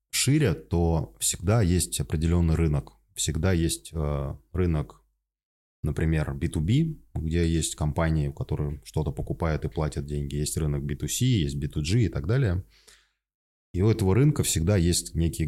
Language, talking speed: Russian, 135 wpm